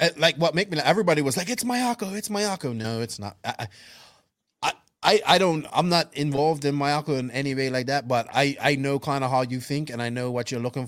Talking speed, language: 250 wpm, English